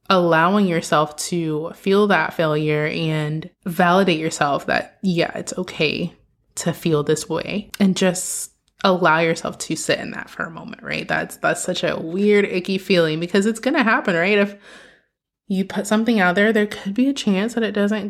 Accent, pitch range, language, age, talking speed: American, 165-205 Hz, English, 20-39, 185 wpm